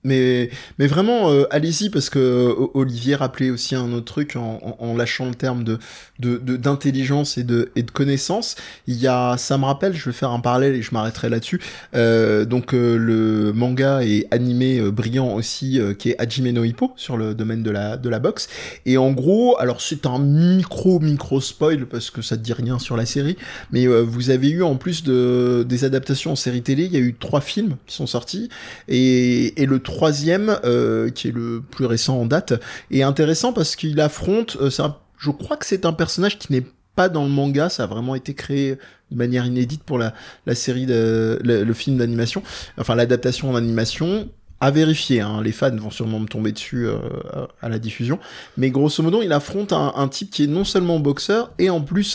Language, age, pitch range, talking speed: French, 20-39, 120-150 Hz, 215 wpm